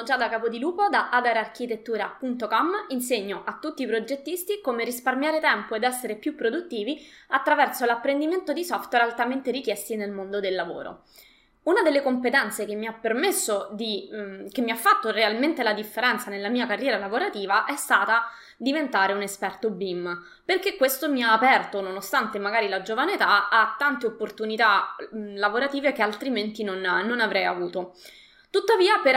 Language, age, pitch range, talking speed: Italian, 20-39, 210-275 Hz, 150 wpm